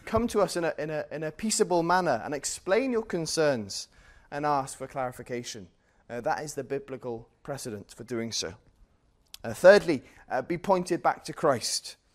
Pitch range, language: 130-170 Hz, English